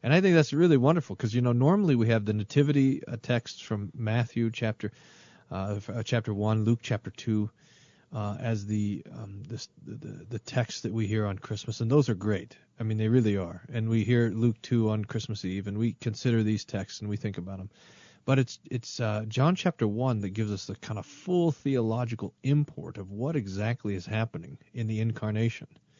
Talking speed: 210 wpm